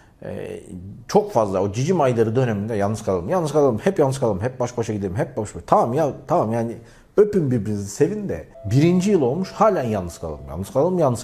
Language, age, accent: Turkish, 40-59, native